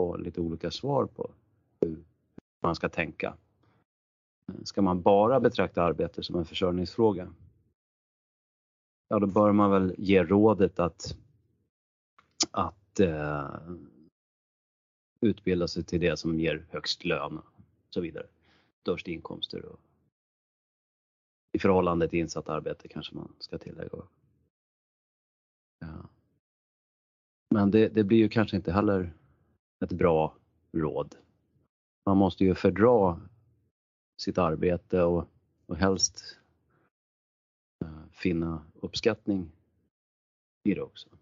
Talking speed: 110 wpm